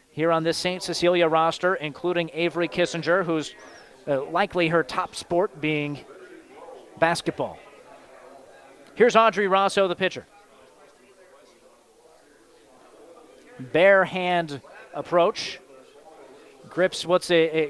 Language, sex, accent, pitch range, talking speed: English, male, American, 165-190 Hz, 100 wpm